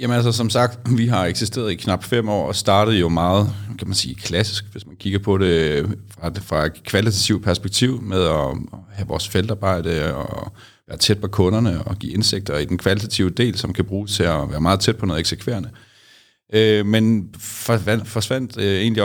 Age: 40-59